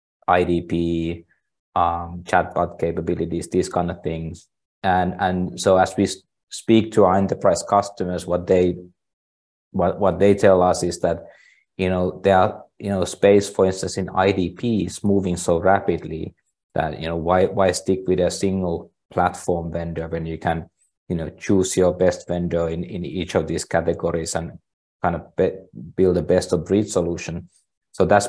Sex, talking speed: male, 170 wpm